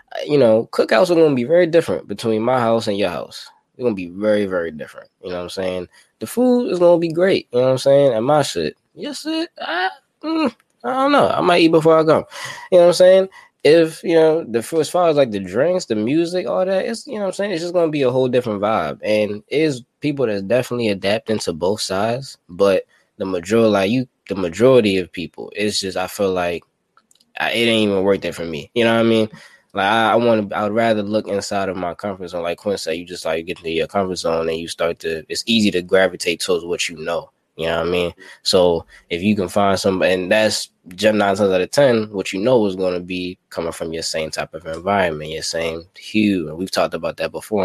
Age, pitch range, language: 20-39, 90-150 Hz, English